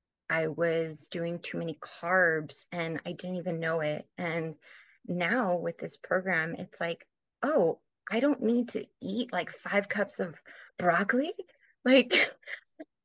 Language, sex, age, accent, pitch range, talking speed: English, female, 20-39, American, 170-220 Hz, 145 wpm